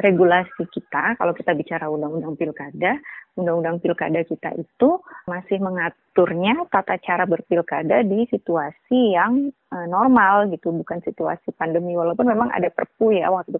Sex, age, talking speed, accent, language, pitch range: female, 20-39, 135 wpm, native, Indonesian, 165-200 Hz